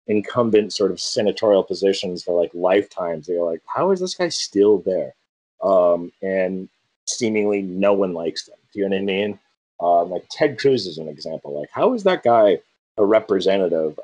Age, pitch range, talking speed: 30-49, 85-120 Hz, 185 wpm